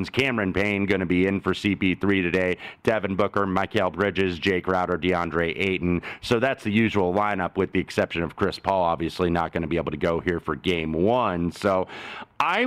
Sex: male